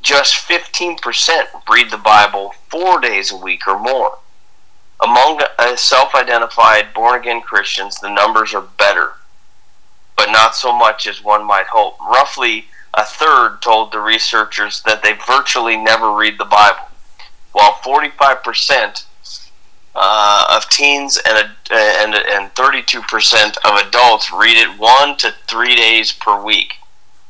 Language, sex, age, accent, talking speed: English, male, 30-49, American, 125 wpm